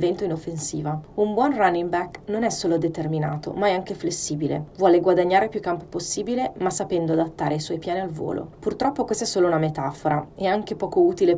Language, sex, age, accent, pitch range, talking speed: Italian, female, 30-49, native, 160-200 Hz, 195 wpm